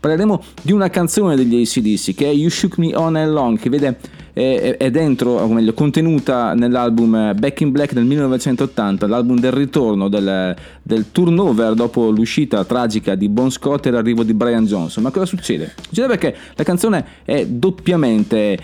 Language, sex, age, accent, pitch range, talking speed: Italian, male, 30-49, native, 115-165 Hz, 175 wpm